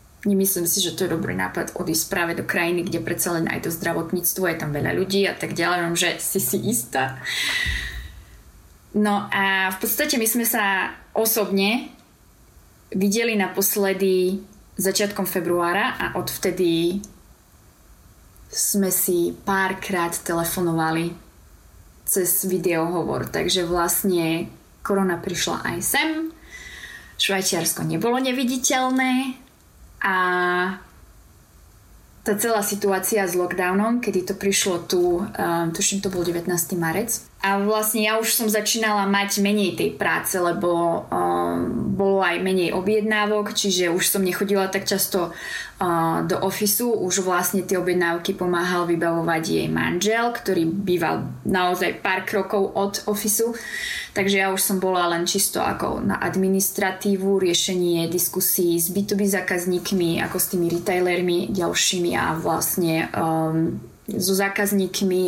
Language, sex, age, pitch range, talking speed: Slovak, female, 20-39, 175-200 Hz, 125 wpm